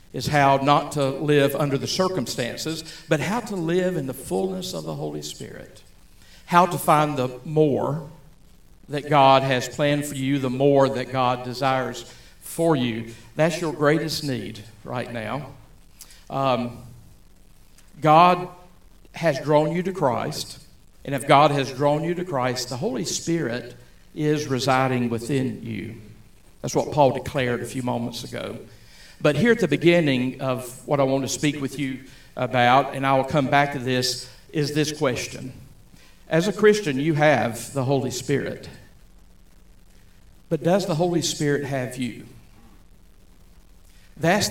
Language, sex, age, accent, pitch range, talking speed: English, male, 50-69, American, 120-150 Hz, 150 wpm